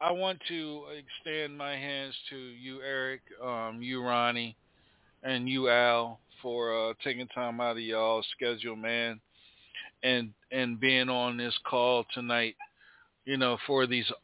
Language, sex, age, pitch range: English, male, 40-59, 115-130 Hz